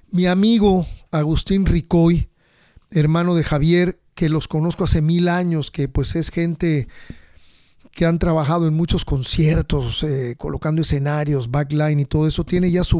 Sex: male